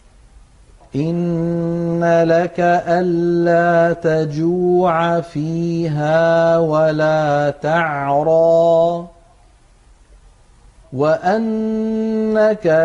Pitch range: 145-170 Hz